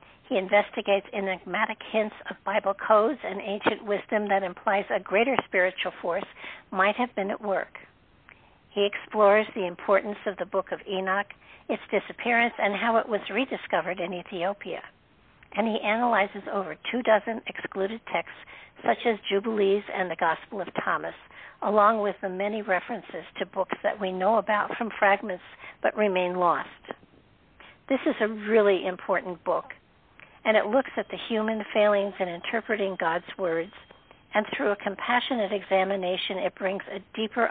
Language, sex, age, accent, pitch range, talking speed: English, female, 60-79, American, 190-220 Hz, 155 wpm